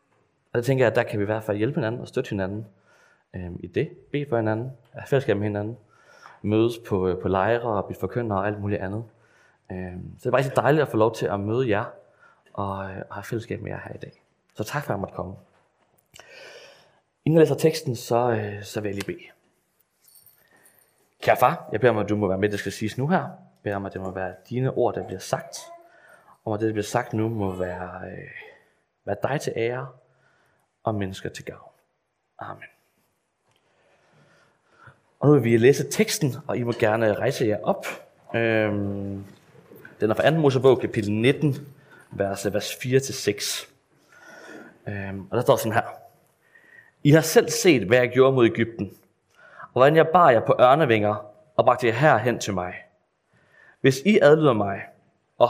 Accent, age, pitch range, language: native, 20-39, 100-130 Hz, Danish